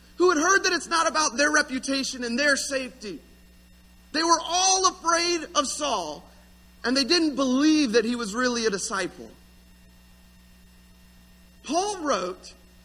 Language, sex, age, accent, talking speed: English, male, 30-49, American, 140 wpm